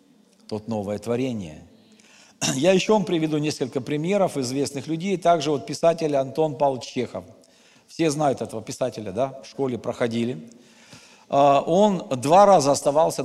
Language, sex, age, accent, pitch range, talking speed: Russian, male, 50-69, native, 125-165 Hz, 130 wpm